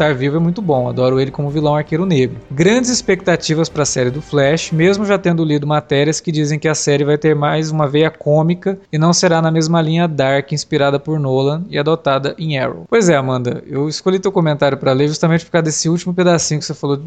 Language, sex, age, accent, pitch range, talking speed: Portuguese, male, 20-39, Brazilian, 135-175 Hz, 230 wpm